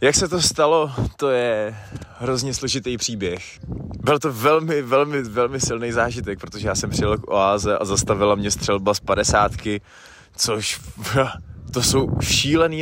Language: Czech